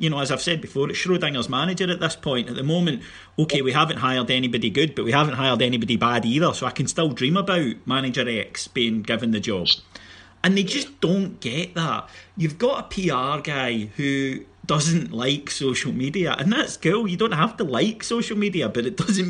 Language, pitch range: English, 135-190 Hz